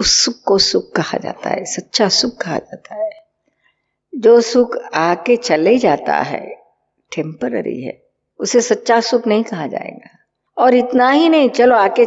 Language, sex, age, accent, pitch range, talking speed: Hindi, female, 50-69, native, 195-270 Hz, 160 wpm